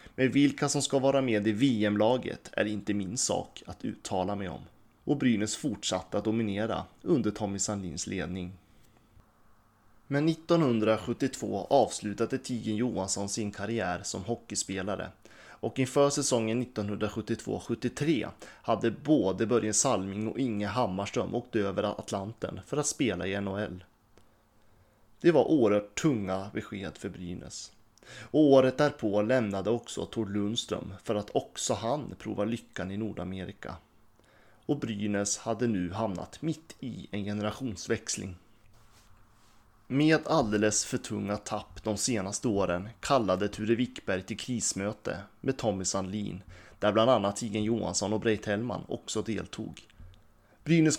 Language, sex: Swedish, male